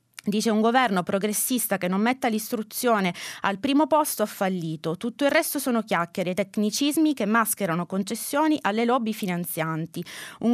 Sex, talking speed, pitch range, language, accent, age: female, 155 wpm, 185-245 Hz, Italian, native, 20-39